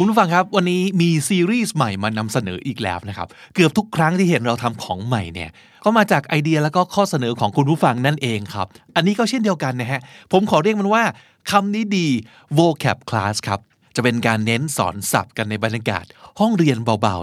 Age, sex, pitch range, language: 20-39, male, 115-165 Hz, Thai